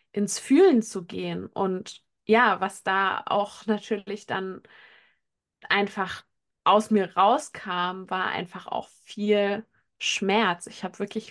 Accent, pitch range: German, 190-220 Hz